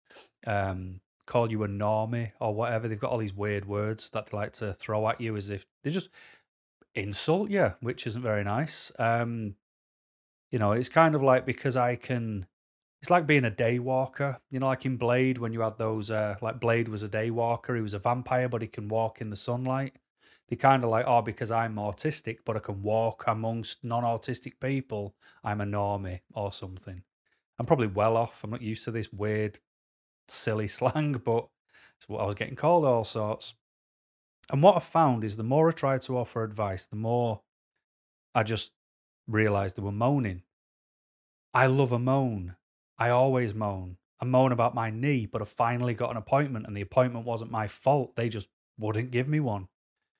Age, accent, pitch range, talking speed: 30-49, British, 105-125 Hz, 195 wpm